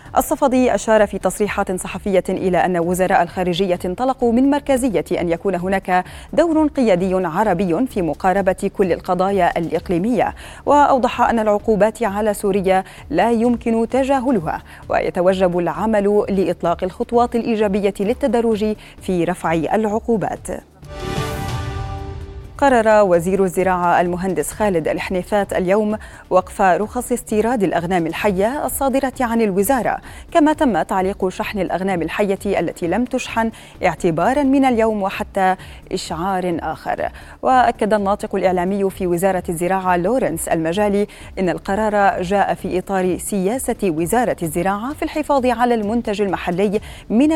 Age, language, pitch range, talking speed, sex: 30-49, Arabic, 185-230 Hz, 115 wpm, female